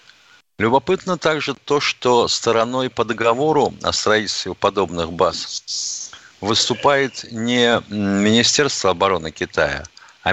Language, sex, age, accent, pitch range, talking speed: Russian, male, 50-69, native, 105-135 Hz, 100 wpm